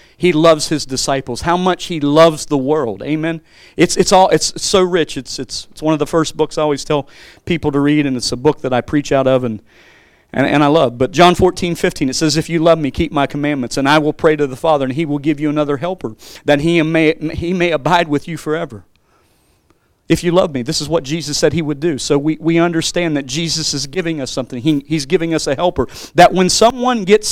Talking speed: 250 wpm